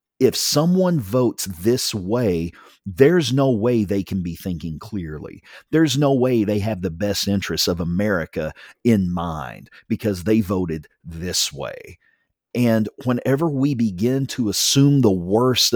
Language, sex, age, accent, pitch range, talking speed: English, male, 40-59, American, 100-130 Hz, 145 wpm